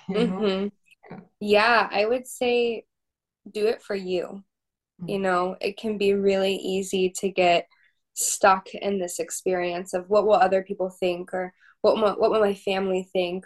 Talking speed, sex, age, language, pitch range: 165 wpm, female, 10-29, English, 185-210 Hz